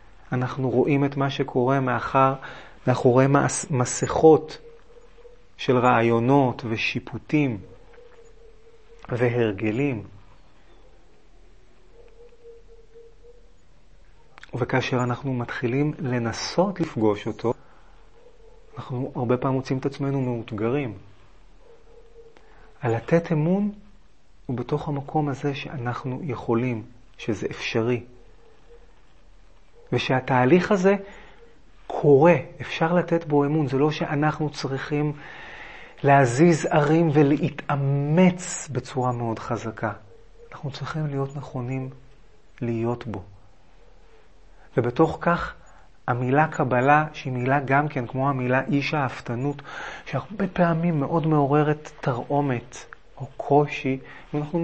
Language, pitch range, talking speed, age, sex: Hebrew, 125-170 Hz, 90 wpm, 30-49, male